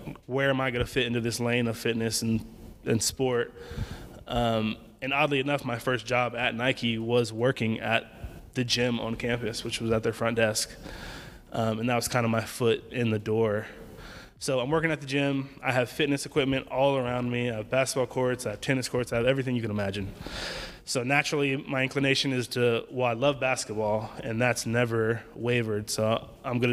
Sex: male